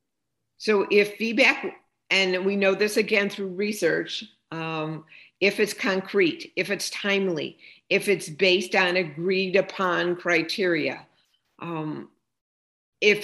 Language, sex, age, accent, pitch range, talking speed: English, female, 50-69, American, 160-200 Hz, 120 wpm